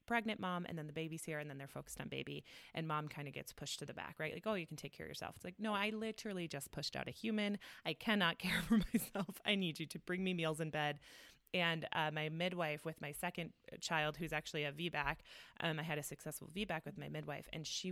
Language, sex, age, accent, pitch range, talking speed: English, female, 20-39, American, 145-170 Hz, 260 wpm